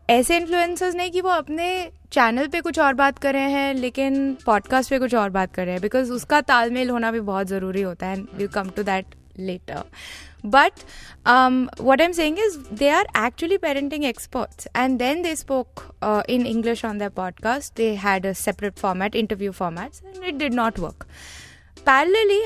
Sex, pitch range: female, 220-290 Hz